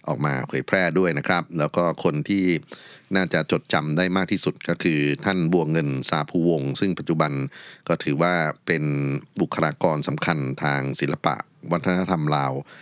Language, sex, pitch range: Thai, male, 75-95 Hz